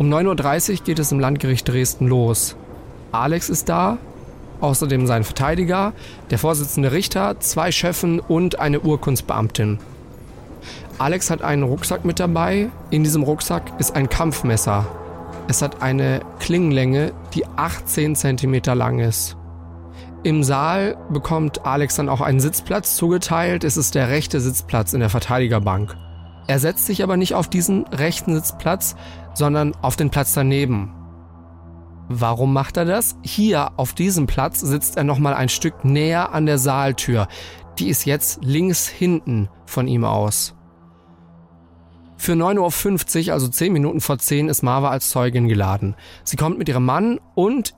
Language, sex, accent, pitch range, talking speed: German, male, German, 115-155 Hz, 150 wpm